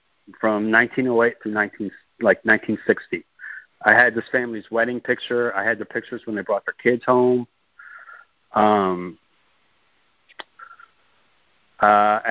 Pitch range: 110-130 Hz